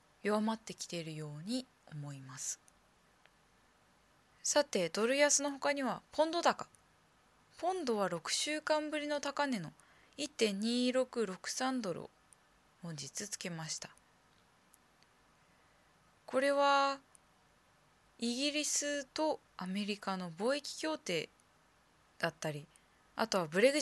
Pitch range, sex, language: 170-260 Hz, female, Japanese